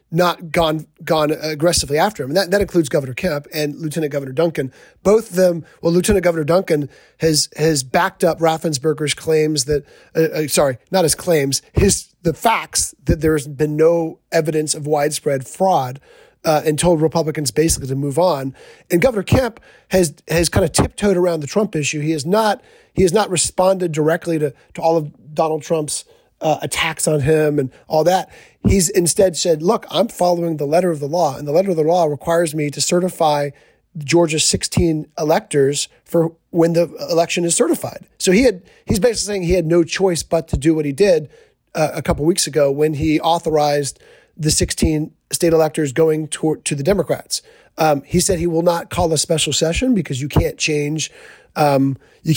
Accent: American